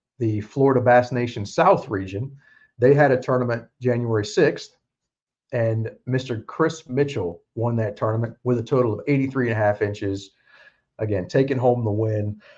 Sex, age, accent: male, 40-59, American